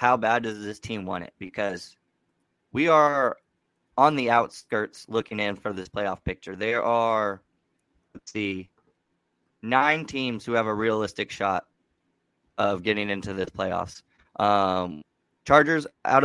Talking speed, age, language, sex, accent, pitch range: 140 wpm, 20-39, English, male, American, 105-130 Hz